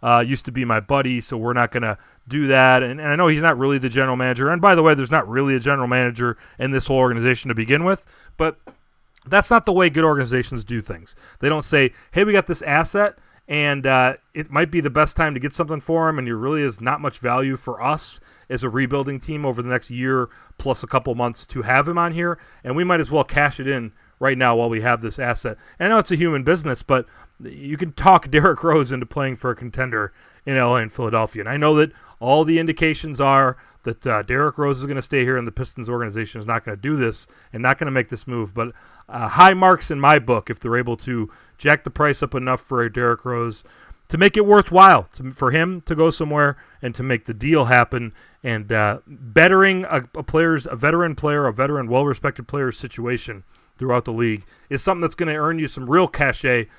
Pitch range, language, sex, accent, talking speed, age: 120-155 Hz, English, male, American, 240 wpm, 30-49